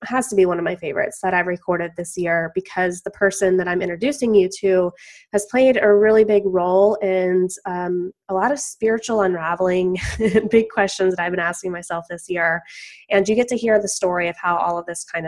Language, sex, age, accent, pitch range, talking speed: English, female, 20-39, American, 180-210 Hz, 215 wpm